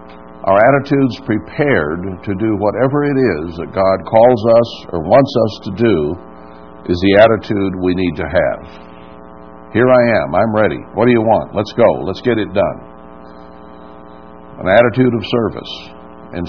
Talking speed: 160 wpm